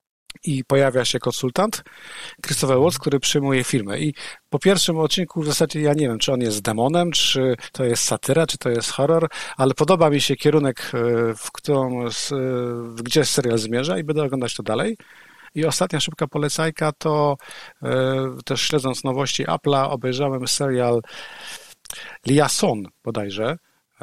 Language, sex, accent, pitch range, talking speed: Polish, male, native, 120-155 Hz, 145 wpm